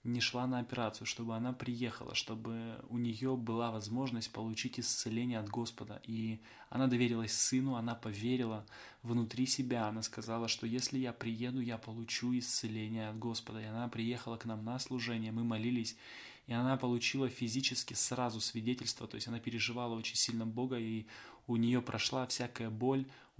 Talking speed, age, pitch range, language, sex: 160 wpm, 20-39, 115-125 Hz, Russian, male